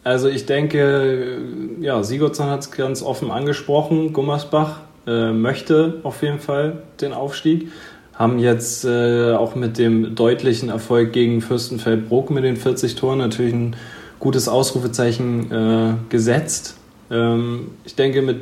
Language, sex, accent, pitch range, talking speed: German, male, German, 115-130 Hz, 135 wpm